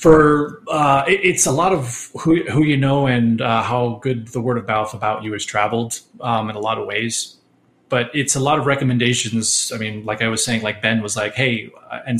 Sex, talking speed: male, 225 wpm